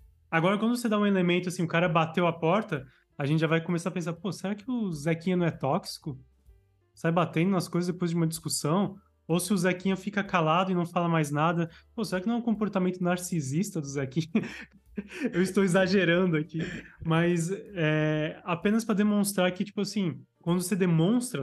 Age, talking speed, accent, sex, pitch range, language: 20-39, 195 wpm, Brazilian, male, 160-200 Hz, Portuguese